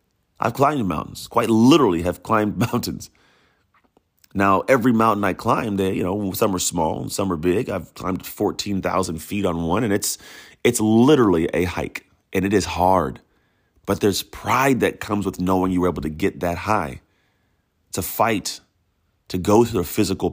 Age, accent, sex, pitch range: 30-49, American, male, 90-105 Hz